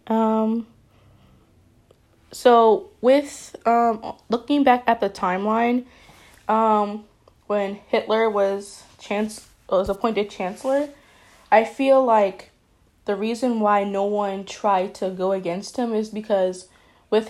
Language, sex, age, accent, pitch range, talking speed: English, female, 10-29, American, 190-225 Hz, 115 wpm